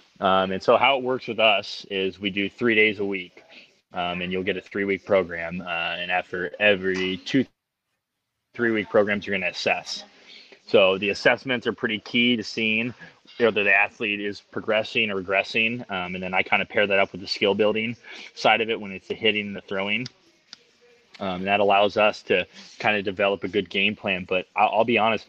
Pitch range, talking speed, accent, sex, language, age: 95-110 Hz, 215 wpm, American, male, English, 20-39